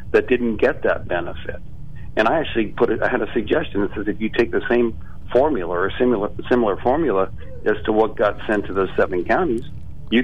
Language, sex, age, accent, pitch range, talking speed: English, male, 50-69, American, 95-115 Hz, 210 wpm